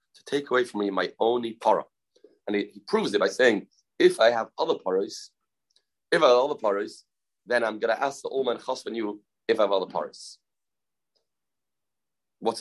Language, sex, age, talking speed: English, male, 30-49, 190 wpm